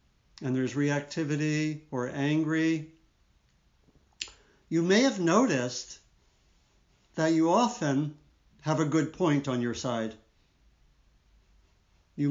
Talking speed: 95 wpm